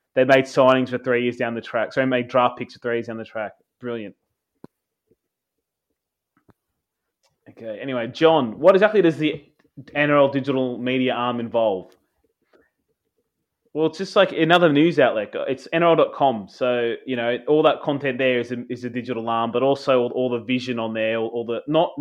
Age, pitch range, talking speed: 20-39, 120-140 Hz, 185 wpm